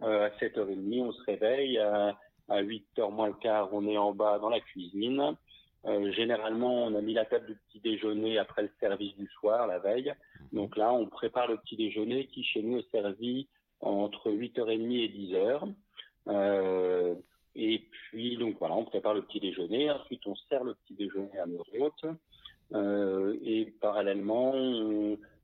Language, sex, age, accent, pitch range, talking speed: French, male, 50-69, French, 100-110 Hz, 175 wpm